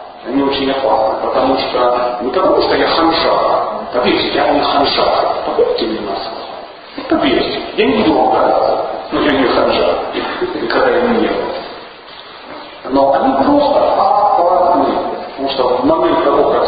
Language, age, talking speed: Russian, 40-59, 145 wpm